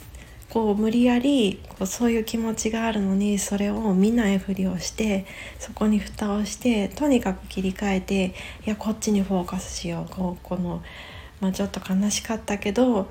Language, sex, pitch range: Japanese, female, 185-220 Hz